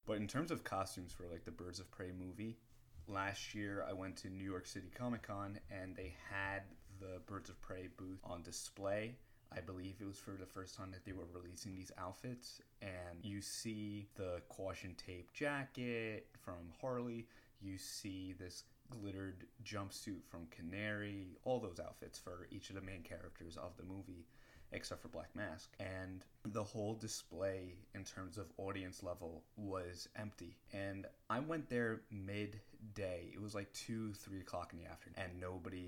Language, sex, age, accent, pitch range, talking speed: English, male, 30-49, American, 95-110 Hz, 175 wpm